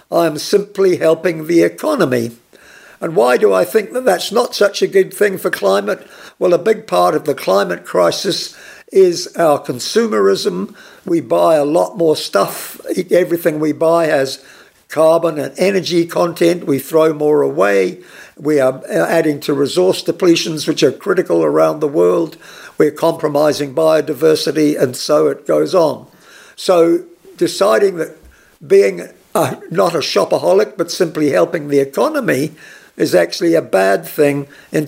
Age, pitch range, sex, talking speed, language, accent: 60-79, 145-185 Hz, male, 150 wpm, English, British